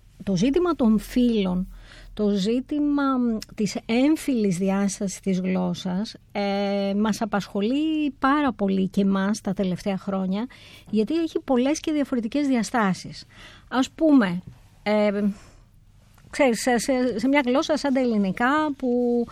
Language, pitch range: Greek, 210-295 Hz